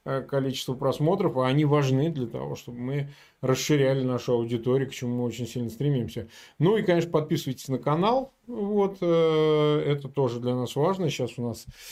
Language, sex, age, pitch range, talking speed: Russian, male, 20-39, 140-185 Hz, 165 wpm